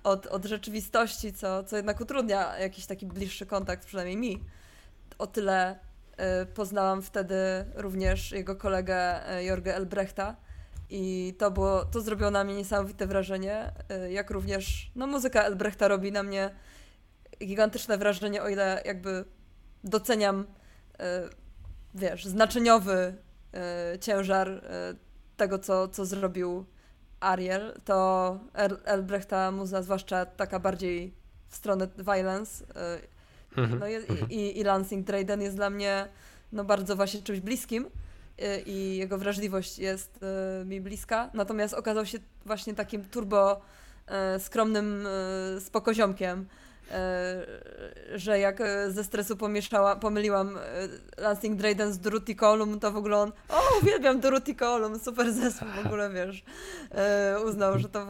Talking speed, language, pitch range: 125 wpm, Polish, 190-210 Hz